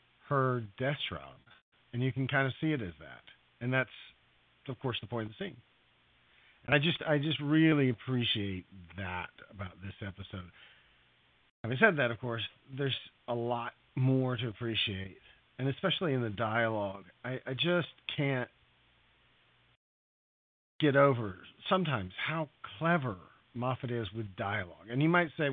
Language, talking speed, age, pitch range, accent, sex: English, 155 wpm, 40-59, 100-140 Hz, American, male